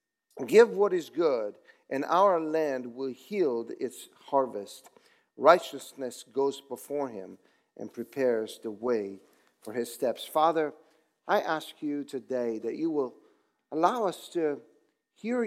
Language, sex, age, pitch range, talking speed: English, male, 50-69, 140-230 Hz, 130 wpm